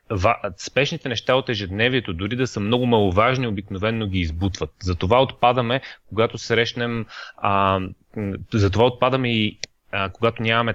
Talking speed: 130 wpm